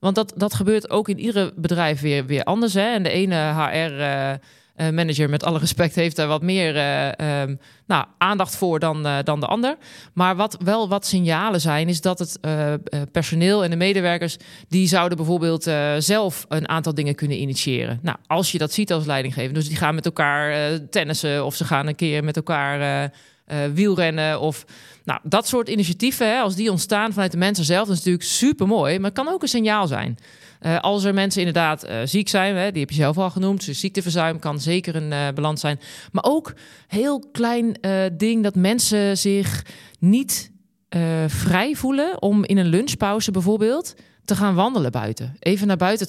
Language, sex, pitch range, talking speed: Dutch, male, 155-200 Hz, 190 wpm